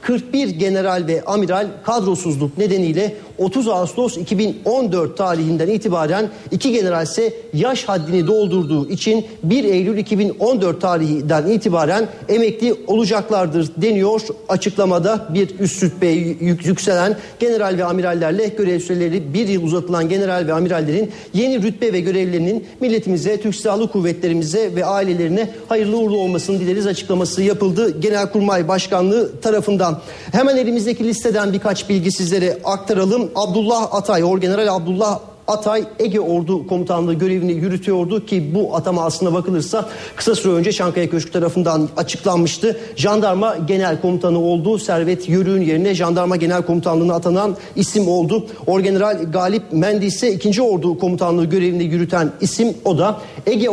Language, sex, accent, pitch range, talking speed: Turkish, male, native, 175-210 Hz, 130 wpm